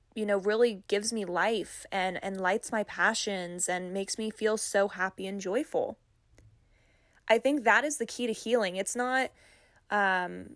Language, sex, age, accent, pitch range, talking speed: English, female, 10-29, American, 195-225 Hz, 170 wpm